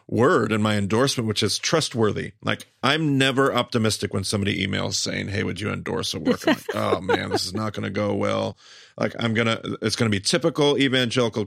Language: English